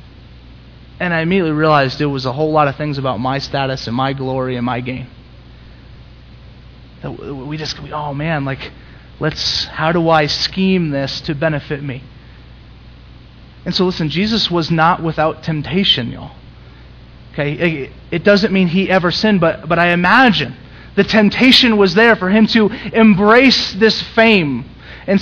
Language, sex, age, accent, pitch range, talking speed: English, male, 30-49, American, 135-190 Hz, 155 wpm